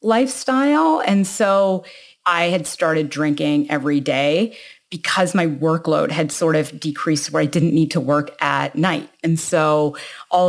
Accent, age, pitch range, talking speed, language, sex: American, 30-49, 150-180 Hz, 155 wpm, English, female